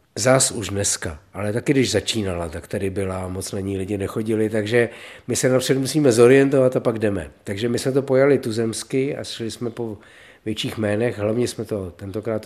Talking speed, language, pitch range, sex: 195 wpm, Czech, 105-135 Hz, male